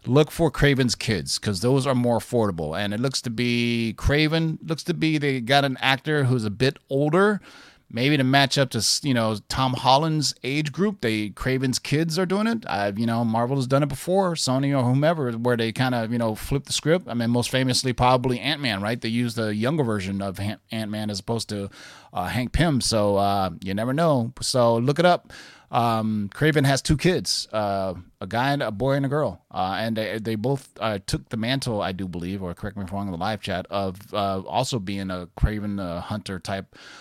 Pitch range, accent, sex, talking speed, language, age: 105-140 Hz, American, male, 220 wpm, English, 30-49